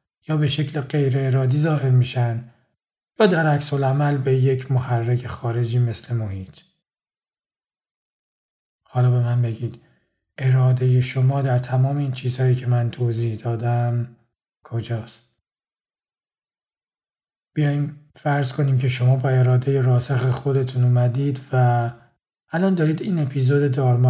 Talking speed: 120 wpm